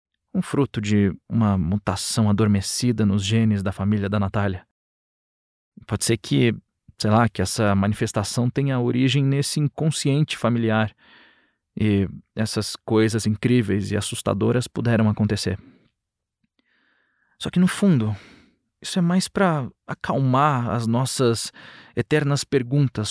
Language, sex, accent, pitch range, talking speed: Portuguese, male, Brazilian, 105-135 Hz, 120 wpm